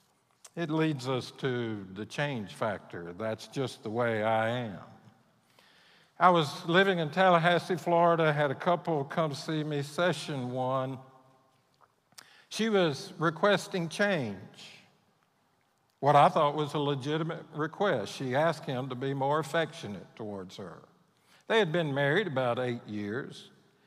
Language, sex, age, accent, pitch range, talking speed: English, male, 60-79, American, 130-170 Hz, 135 wpm